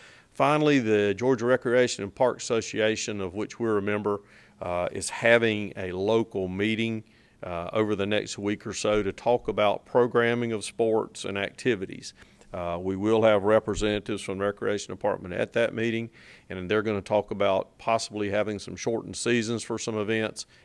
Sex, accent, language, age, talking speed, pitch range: male, American, English, 40-59, 165 wpm, 100-115 Hz